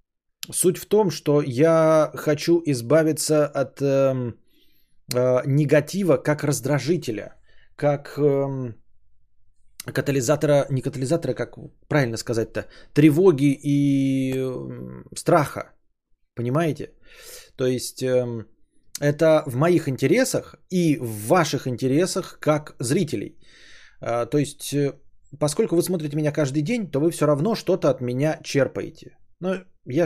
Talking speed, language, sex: 120 wpm, Bulgarian, male